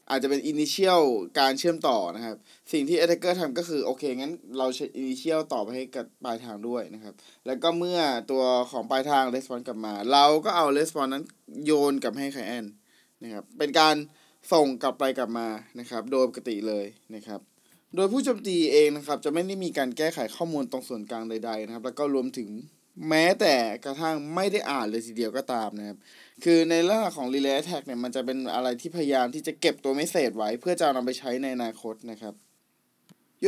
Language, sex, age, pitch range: Thai, male, 20-39, 120-155 Hz